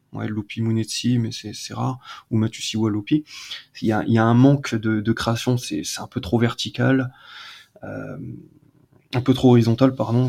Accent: French